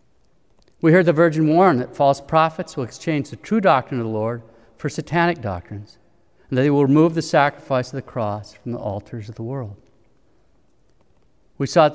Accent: American